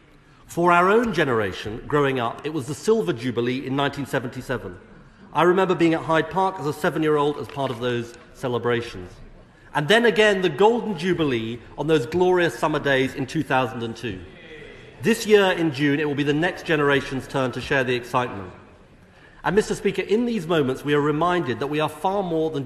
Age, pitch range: 40-59, 125-170 Hz